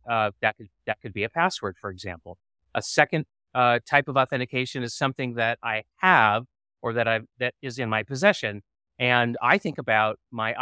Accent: American